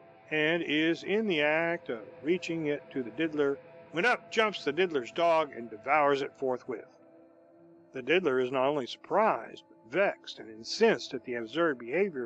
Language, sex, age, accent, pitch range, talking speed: English, male, 50-69, American, 125-170 Hz, 170 wpm